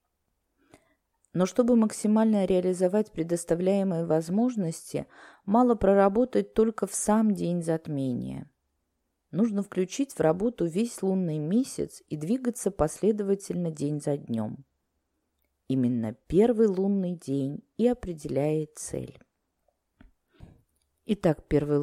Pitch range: 145-215 Hz